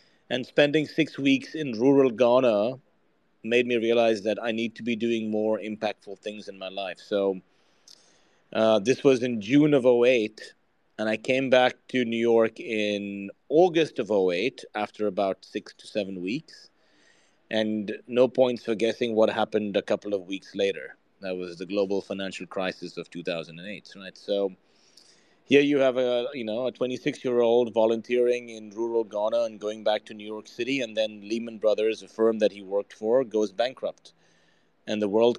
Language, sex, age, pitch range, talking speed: English, male, 30-49, 105-130 Hz, 180 wpm